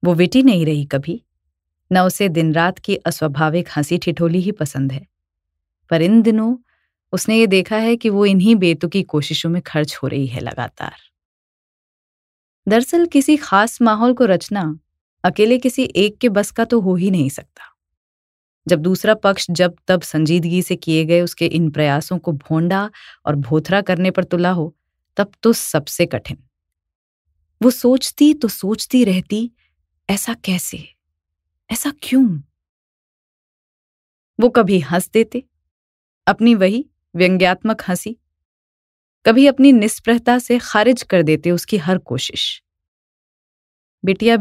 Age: 20-39